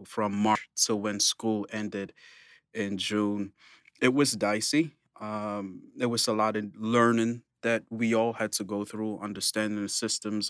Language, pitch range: English, 105-115 Hz